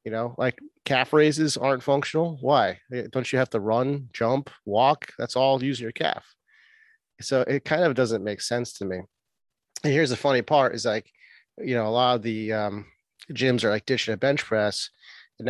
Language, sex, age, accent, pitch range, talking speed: English, male, 30-49, American, 115-140 Hz, 200 wpm